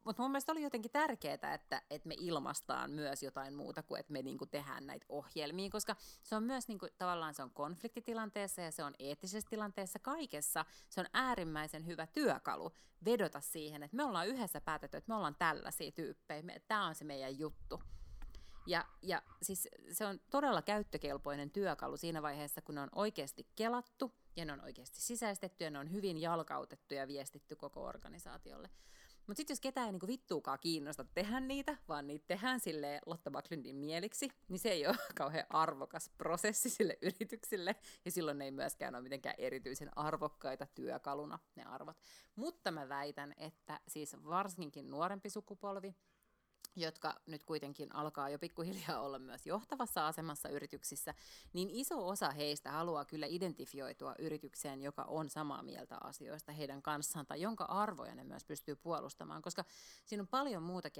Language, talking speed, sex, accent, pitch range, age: Finnish, 165 wpm, female, native, 145-205 Hz, 30-49